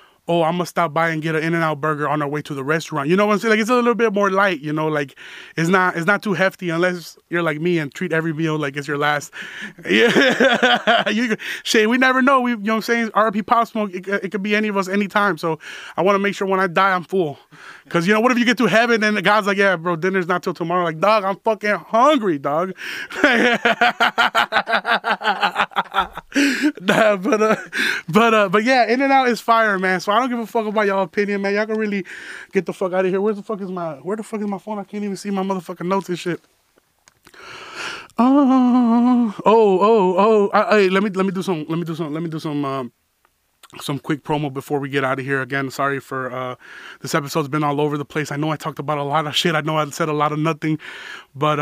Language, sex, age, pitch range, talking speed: English, male, 20-39, 155-215 Hz, 250 wpm